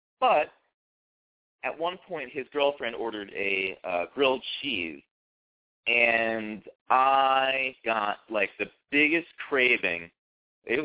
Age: 30-49